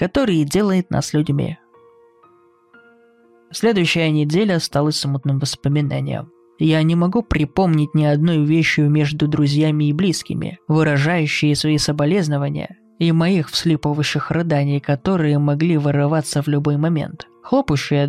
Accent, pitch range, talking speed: native, 145-180 Hz, 115 wpm